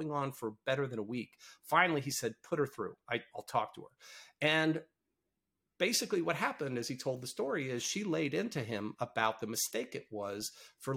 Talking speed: 195 wpm